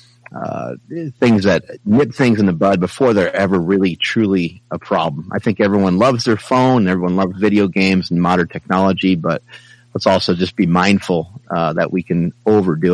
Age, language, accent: 30-49, English, American